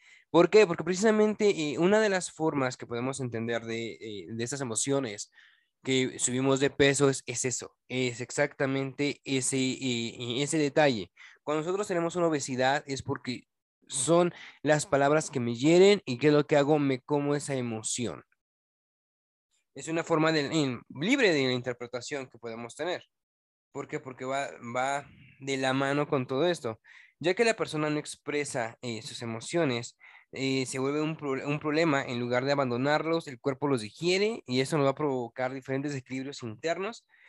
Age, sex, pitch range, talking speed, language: 20-39, male, 130-155 Hz, 170 wpm, Spanish